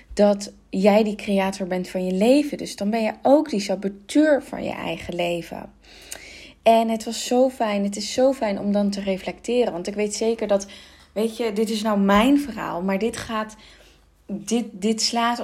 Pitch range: 195-235 Hz